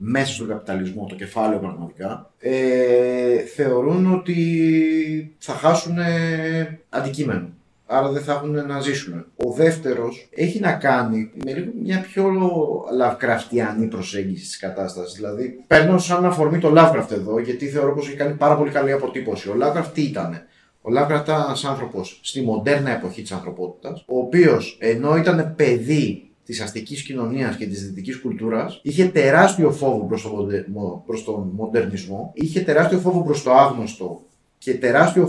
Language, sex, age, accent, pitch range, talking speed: Greek, male, 30-49, native, 115-155 Hz, 155 wpm